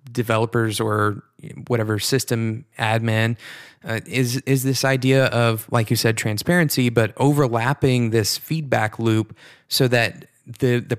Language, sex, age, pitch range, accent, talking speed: English, male, 20-39, 110-130 Hz, American, 130 wpm